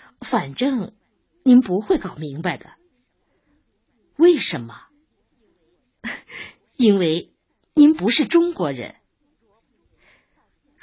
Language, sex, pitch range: Chinese, female, 160-245 Hz